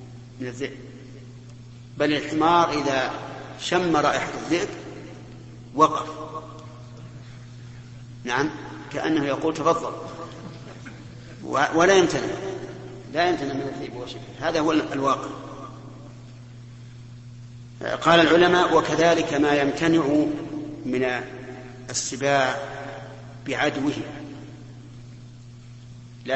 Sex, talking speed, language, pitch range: male, 70 wpm, Arabic, 120-155 Hz